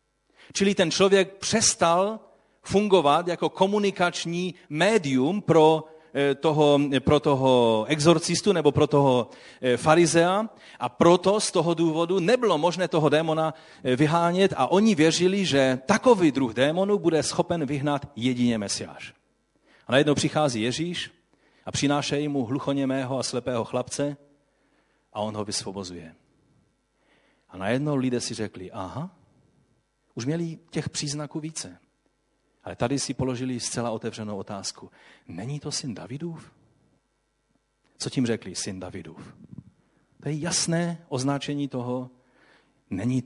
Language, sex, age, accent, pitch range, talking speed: Czech, male, 40-59, native, 125-170 Hz, 120 wpm